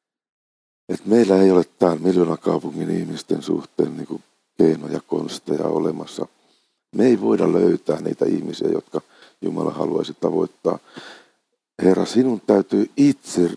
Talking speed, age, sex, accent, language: 125 wpm, 50-69, male, native, Finnish